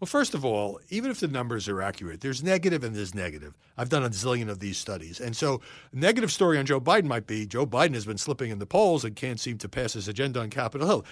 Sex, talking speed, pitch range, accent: male, 270 wpm, 115-155 Hz, American